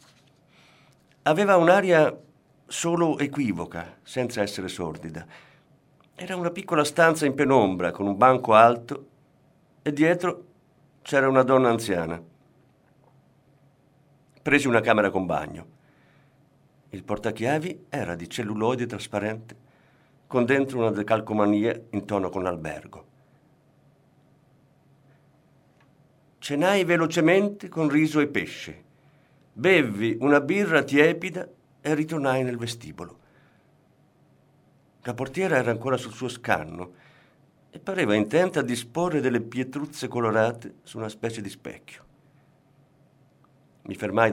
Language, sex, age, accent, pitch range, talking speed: Italian, male, 50-69, native, 110-150 Hz, 105 wpm